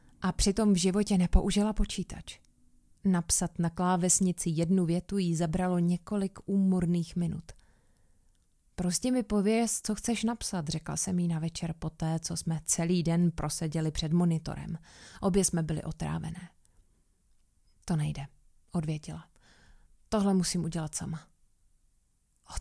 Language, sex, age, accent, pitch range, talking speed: Czech, female, 30-49, native, 160-185 Hz, 125 wpm